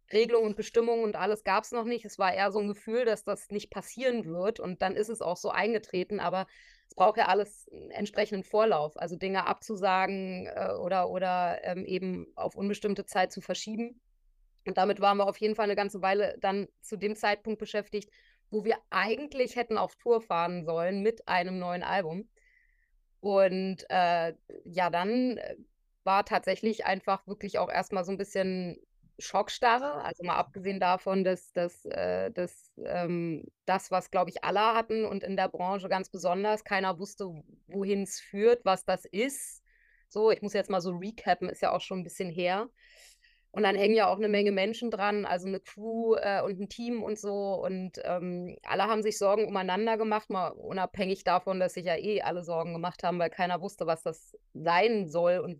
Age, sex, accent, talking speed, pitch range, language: 20-39, female, German, 190 wpm, 185-215 Hz, German